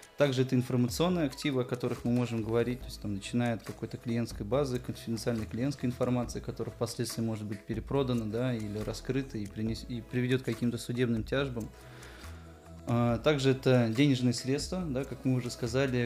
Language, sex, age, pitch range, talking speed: Russian, male, 20-39, 115-130 Hz, 170 wpm